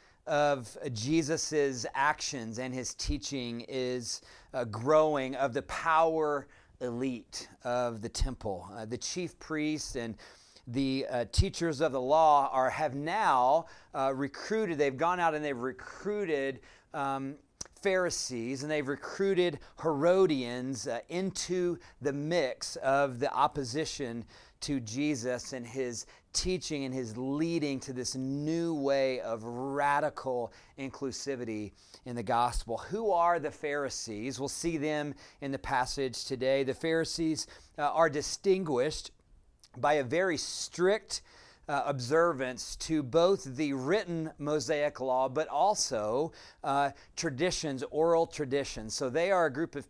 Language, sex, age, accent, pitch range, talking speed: English, male, 40-59, American, 130-160 Hz, 130 wpm